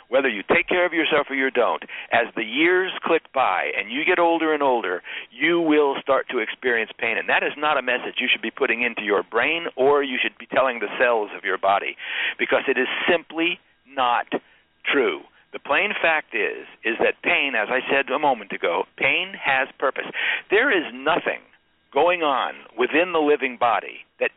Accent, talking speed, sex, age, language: American, 200 wpm, male, 60-79, English